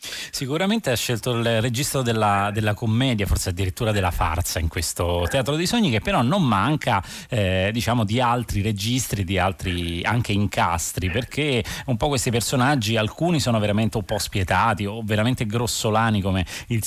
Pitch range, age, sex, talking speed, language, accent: 95-120 Hz, 30-49, male, 165 wpm, Italian, native